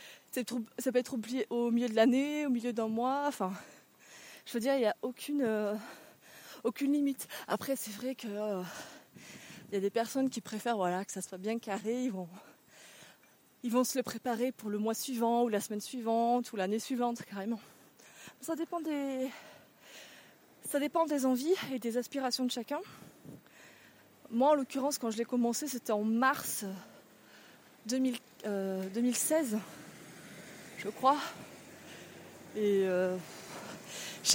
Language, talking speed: French, 155 wpm